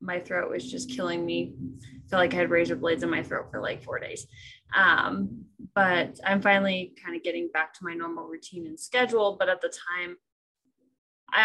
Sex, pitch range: female, 175-210 Hz